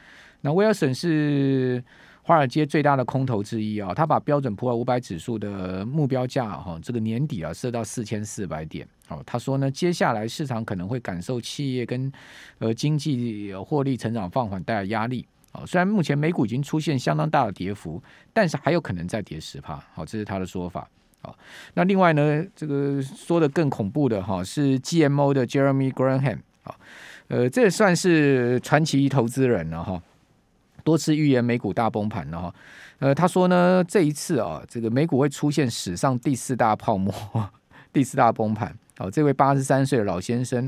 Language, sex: Chinese, male